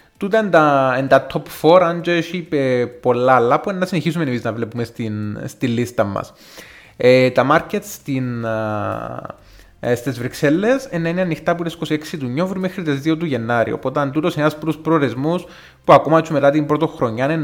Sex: male